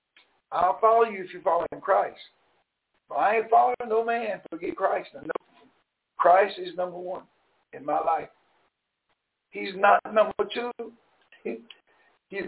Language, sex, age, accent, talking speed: English, male, 60-79, American, 135 wpm